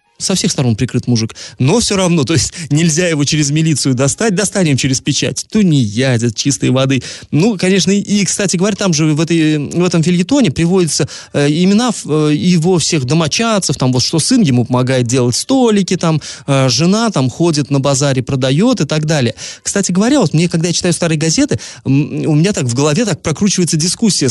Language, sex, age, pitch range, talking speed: Russian, male, 20-39, 130-180 Hz, 195 wpm